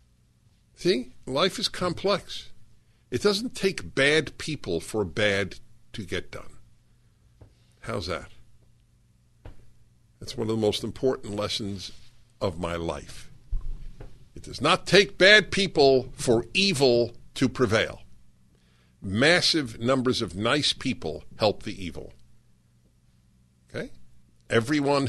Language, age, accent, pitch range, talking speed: English, 60-79, American, 95-130 Hz, 110 wpm